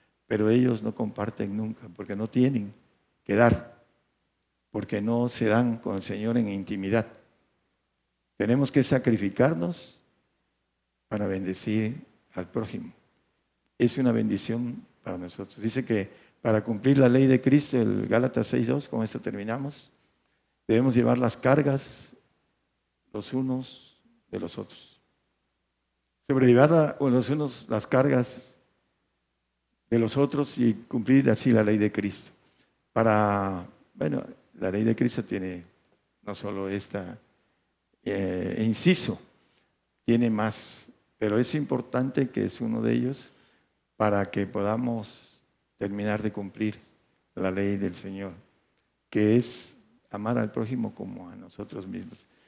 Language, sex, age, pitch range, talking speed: Spanish, male, 50-69, 105-130 Hz, 125 wpm